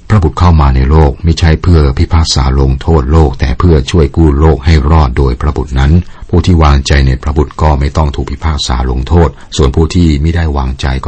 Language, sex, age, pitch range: Thai, male, 60-79, 70-85 Hz